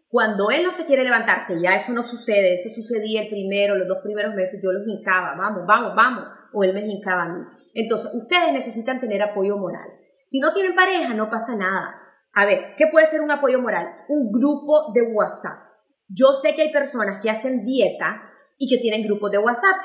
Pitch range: 210-285 Hz